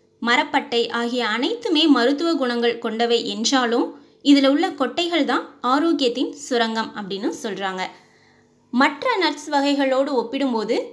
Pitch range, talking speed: 235-305 Hz, 105 wpm